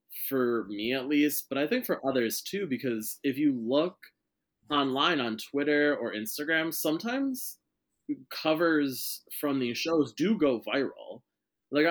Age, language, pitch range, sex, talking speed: 20-39, English, 110-145 Hz, male, 140 wpm